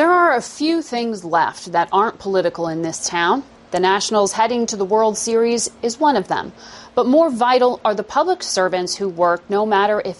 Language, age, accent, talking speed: English, 40-59, American, 205 wpm